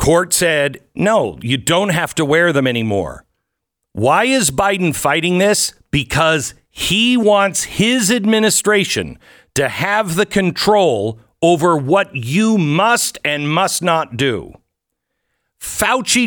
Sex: male